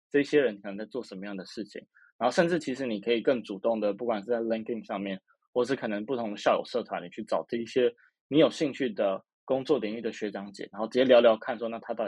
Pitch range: 110-130 Hz